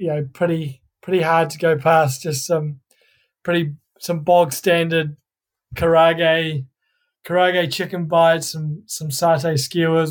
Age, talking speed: 20-39, 130 wpm